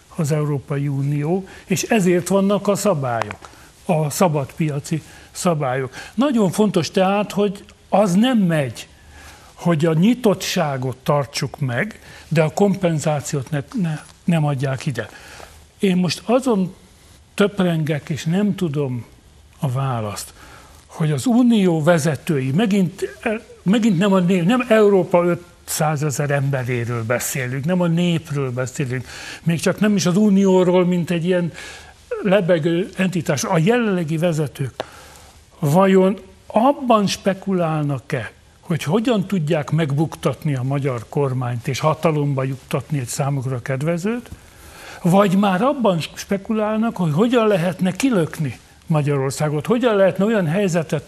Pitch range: 145-195 Hz